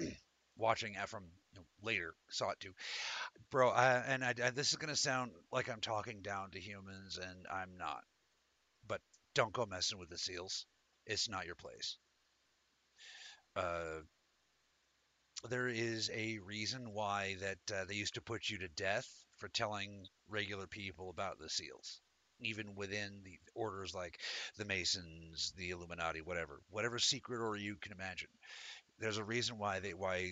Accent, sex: American, male